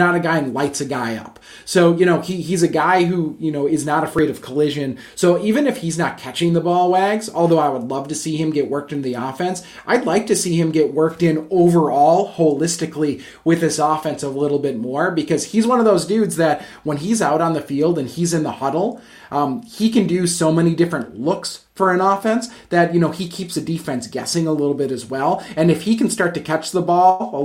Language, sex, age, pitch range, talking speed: English, male, 30-49, 145-175 Hz, 245 wpm